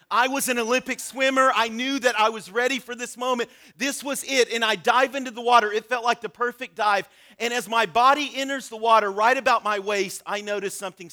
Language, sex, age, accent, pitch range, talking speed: English, male, 40-59, American, 210-260 Hz, 230 wpm